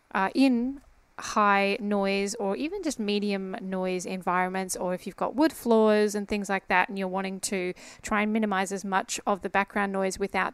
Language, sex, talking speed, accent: English, female, 195 wpm, Australian